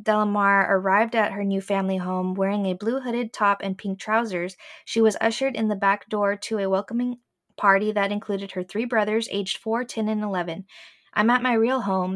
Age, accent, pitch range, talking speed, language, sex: 20-39, American, 195-225 Hz, 200 wpm, English, female